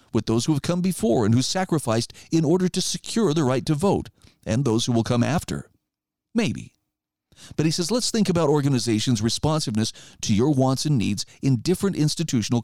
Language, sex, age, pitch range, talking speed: English, male, 50-69, 120-175 Hz, 190 wpm